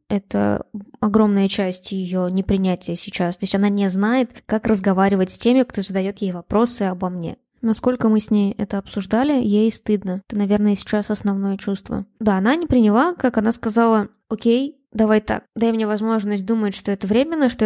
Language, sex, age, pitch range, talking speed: Russian, female, 20-39, 200-230 Hz, 175 wpm